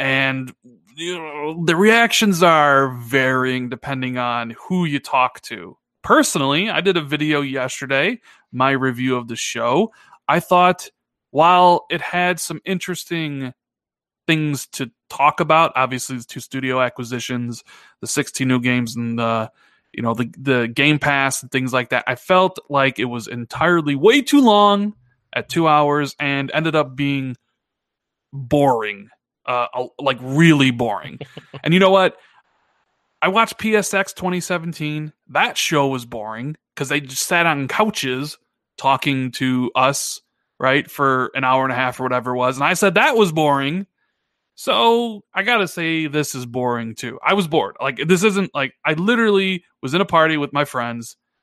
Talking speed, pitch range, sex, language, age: 160 wpm, 130-175 Hz, male, English, 30-49